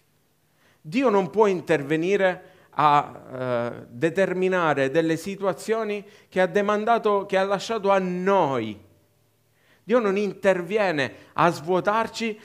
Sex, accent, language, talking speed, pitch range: male, native, Italian, 105 wpm, 130-200 Hz